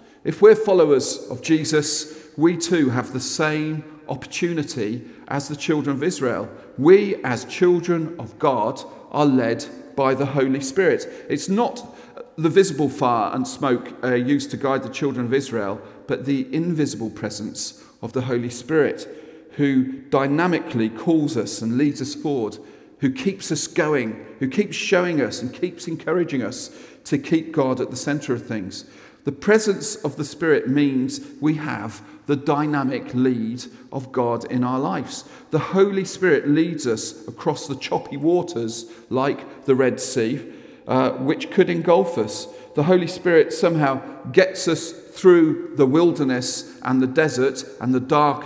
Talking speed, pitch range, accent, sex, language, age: 155 wpm, 130-170 Hz, British, male, English, 40-59